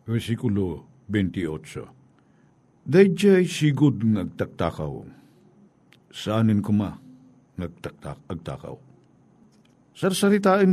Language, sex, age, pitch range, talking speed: Filipino, male, 50-69, 105-140 Hz, 65 wpm